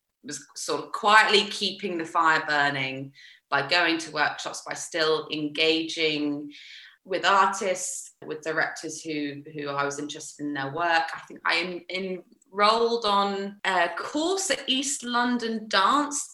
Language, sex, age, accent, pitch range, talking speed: English, female, 20-39, British, 165-245 Hz, 140 wpm